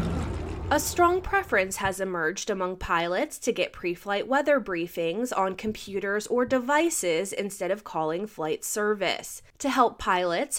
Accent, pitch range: American, 180-265 Hz